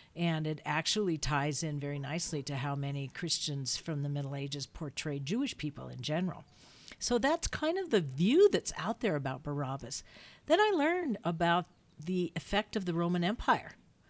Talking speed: 175 wpm